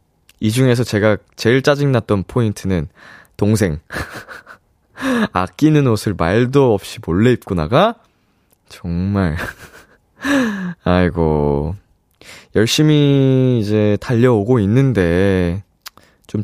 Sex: male